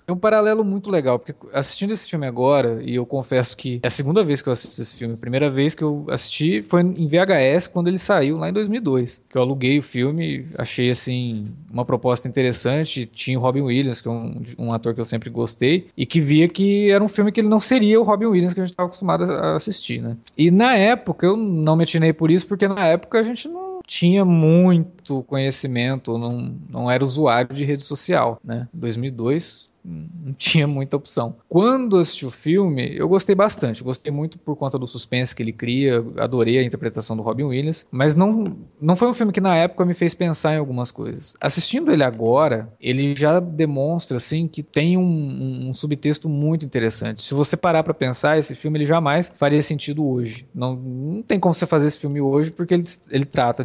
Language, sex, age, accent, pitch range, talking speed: Portuguese, male, 20-39, Brazilian, 130-175 Hz, 215 wpm